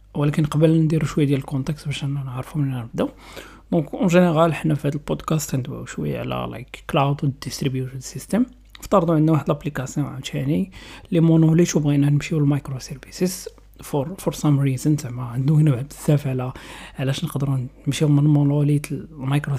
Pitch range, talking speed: 135-165 Hz, 155 wpm